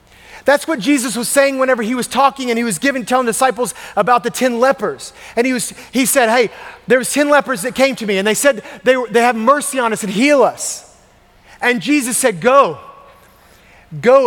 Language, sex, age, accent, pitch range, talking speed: English, male, 30-49, American, 175-255 Hz, 215 wpm